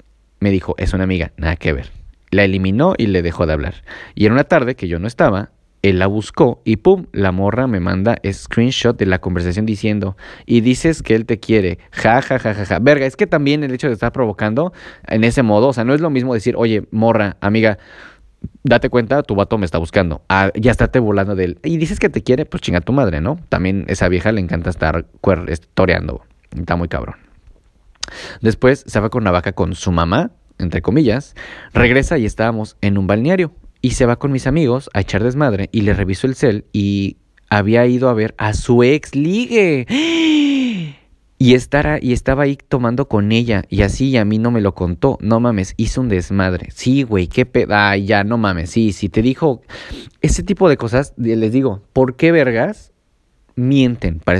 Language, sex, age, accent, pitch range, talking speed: Spanish, male, 30-49, Mexican, 95-130 Hz, 210 wpm